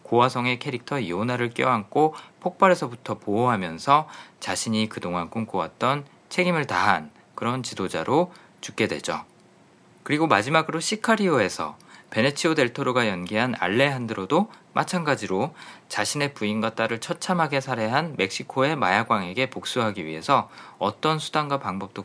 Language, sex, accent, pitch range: Korean, male, native, 110-155 Hz